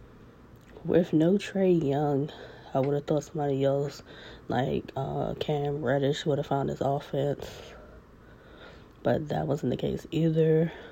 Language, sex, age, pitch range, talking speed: English, female, 20-39, 145-170 Hz, 135 wpm